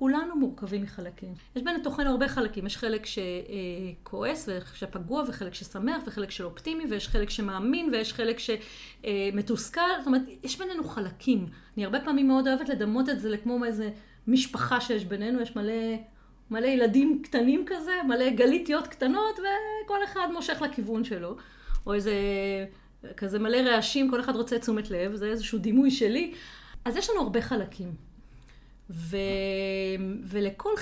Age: 30-49